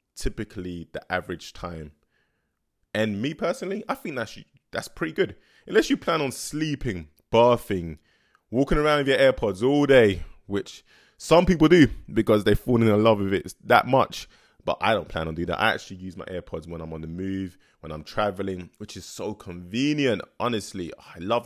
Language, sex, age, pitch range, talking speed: English, male, 20-39, 85-120 Hz, 185 wpm